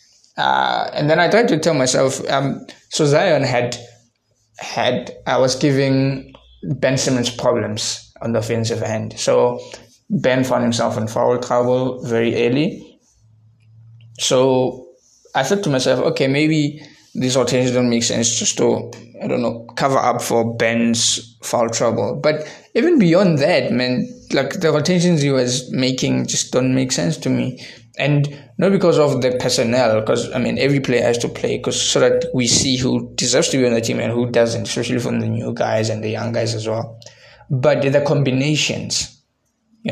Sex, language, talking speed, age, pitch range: male, English, 175 wpm, 20-39, 115-140 Hz